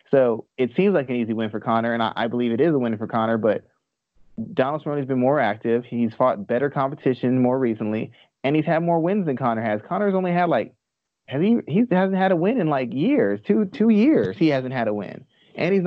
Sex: male